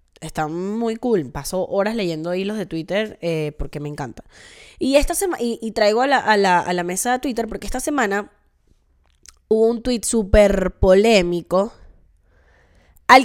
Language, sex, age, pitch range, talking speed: Spanish, female, 10-29, 175-250 Hz, 170 wpm